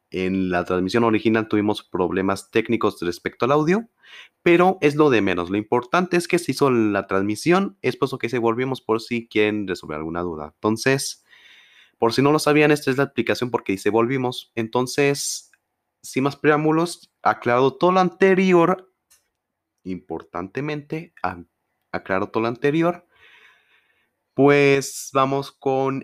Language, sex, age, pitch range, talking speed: Spanish, male, 30-49, 105-140 Hz, 150 wpm